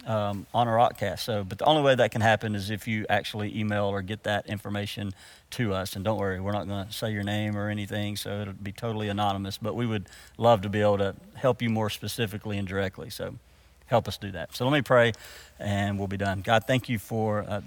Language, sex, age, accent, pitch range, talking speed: English, male, 50-69, American, 100-115 Hz, 240 wpm